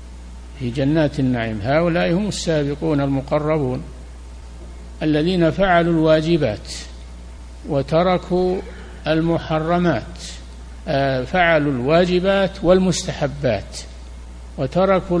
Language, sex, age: Arabic, male, 60-79